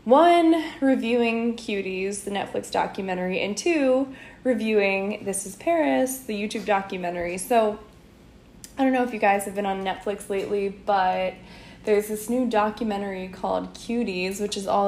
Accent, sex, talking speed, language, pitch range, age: American, female, 150 wpm, English, 195-255 Hz, 10-29